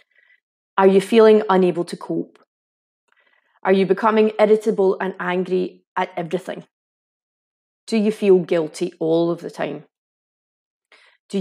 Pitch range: 170-205 Hz